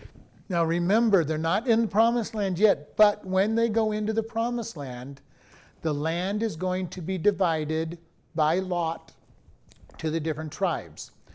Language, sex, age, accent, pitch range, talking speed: English, male, 50-69, American, 150-185 Hz, 160 wpm